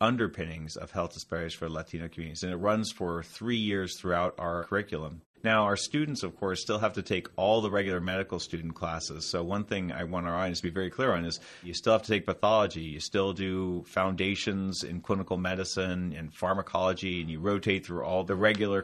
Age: 30-49